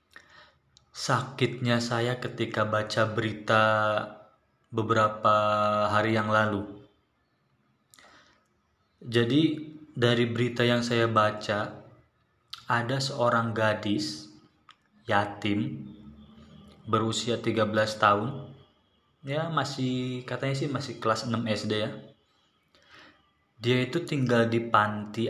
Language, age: Indonesian, 20-39